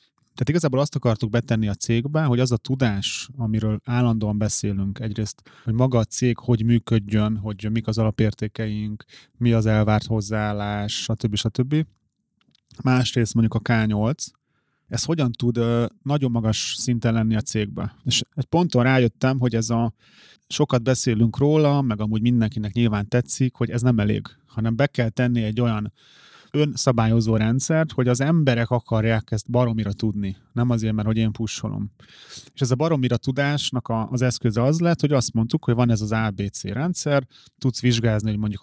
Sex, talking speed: male, 165 wpm